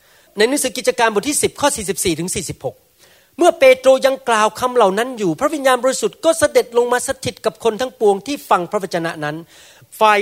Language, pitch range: Thai, 180-265 Hz